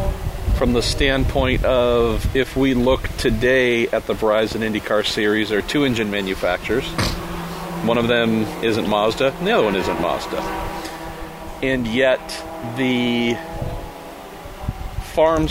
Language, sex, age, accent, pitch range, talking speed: English, male, 40-59, American, 110-135 Hz, 130 wpm